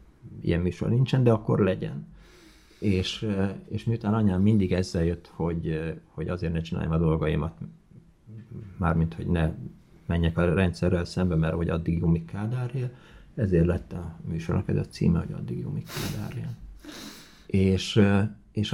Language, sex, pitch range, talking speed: Hungarian, male, 85-110 Hz, 140 wpm